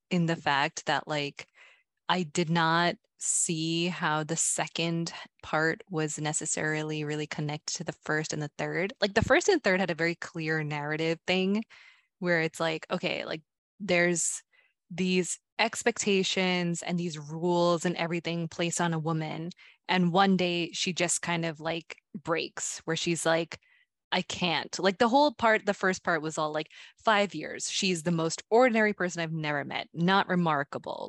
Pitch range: 155-180 Hz